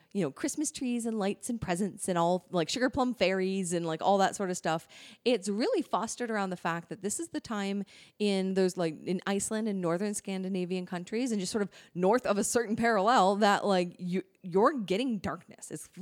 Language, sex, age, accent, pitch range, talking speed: English, female, 30-49, American, 180-225 Hz, 210 wpm